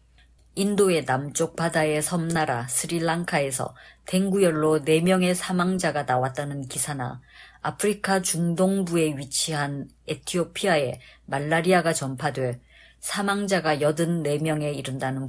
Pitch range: 135-185 Hz